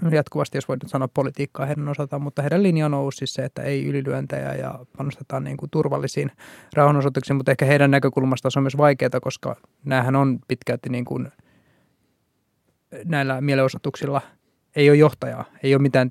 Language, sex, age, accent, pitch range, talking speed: Finnish, male, 20-39, native, 125-140 Hz, 165 wpm